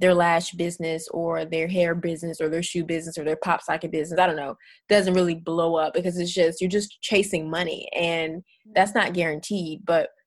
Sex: female